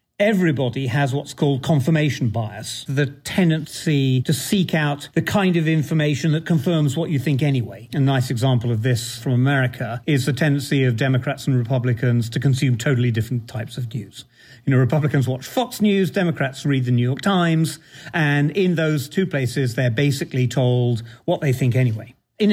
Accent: British